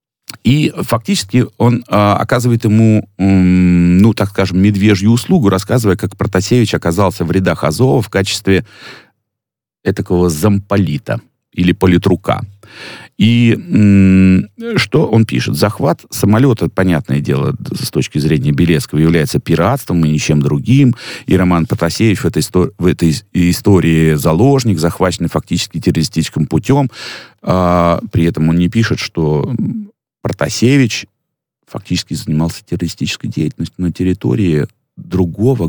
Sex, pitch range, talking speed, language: male, 85-115 Hz, 120 wpm, Russian